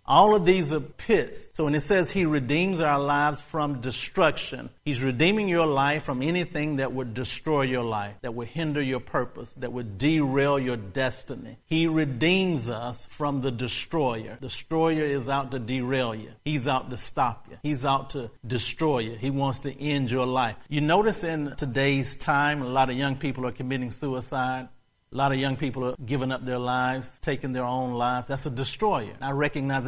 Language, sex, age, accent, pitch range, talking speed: English, male, 50-69, American, 125-145 Hz, 195 wpm